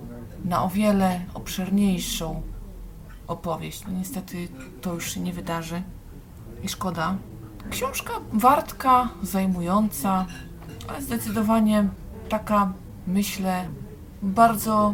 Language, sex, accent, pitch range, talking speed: Polish, female, native, 155-195 Hz, 85 wpm